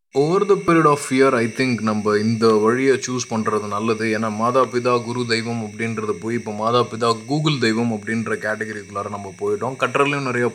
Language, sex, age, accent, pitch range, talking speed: Tamil, male, 20-39, native, 110-130 Hz, 165 wpm